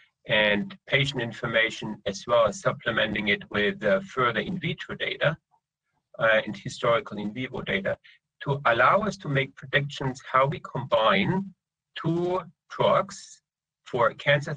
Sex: male